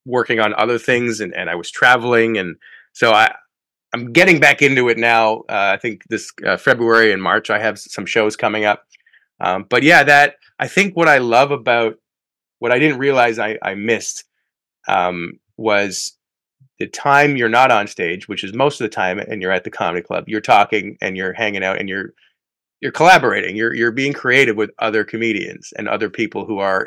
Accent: American